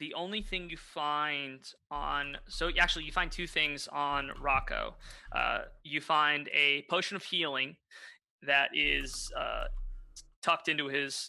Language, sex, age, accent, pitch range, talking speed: English, male, 20-39, American, 145-185 Hz, 145 wpm